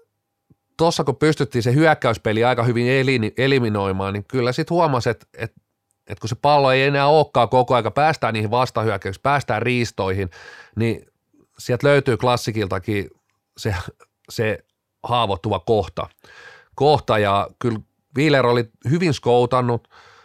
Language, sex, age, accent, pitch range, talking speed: Finnish, male, 30-49, native, 110-135 Hz, 125 wpm